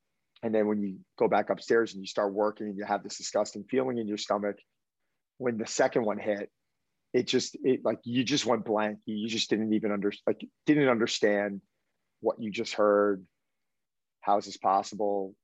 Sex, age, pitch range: male, 30-49, 100-110 Hz